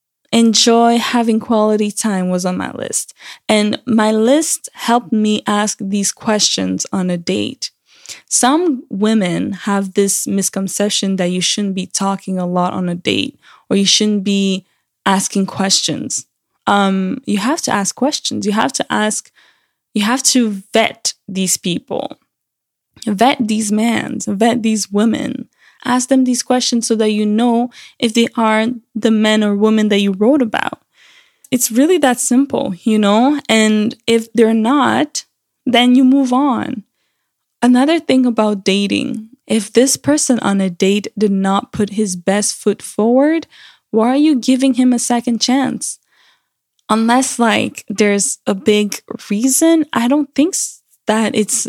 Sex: female